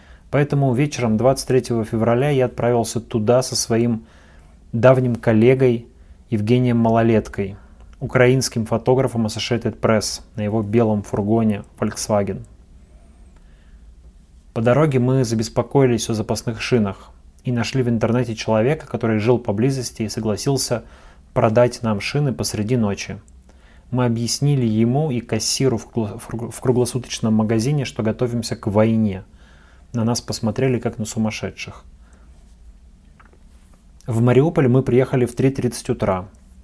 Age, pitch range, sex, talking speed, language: 30-49, 95-125 Hz, male, 115 wpm, Russian